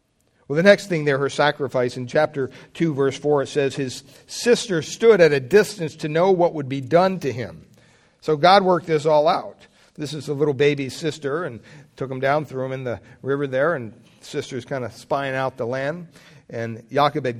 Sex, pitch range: male, 120-150 Hz